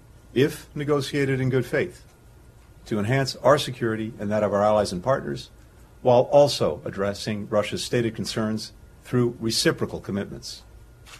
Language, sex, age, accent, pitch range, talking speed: English, male, 50-69, American, 105-130 Hz, 135 wpm